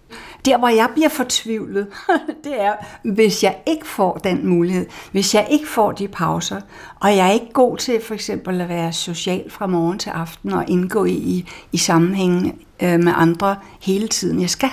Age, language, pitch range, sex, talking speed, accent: 60-79, Danish, 180-220 Hz, female, 185 wpm, native